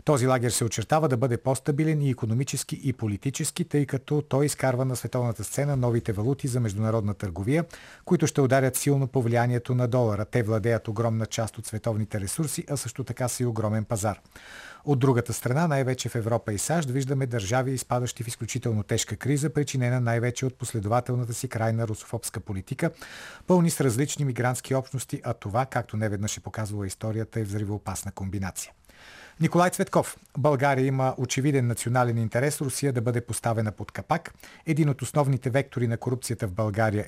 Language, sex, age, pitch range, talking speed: Bulgarian, male, 40-59, 115-140 Hz, 165 wpm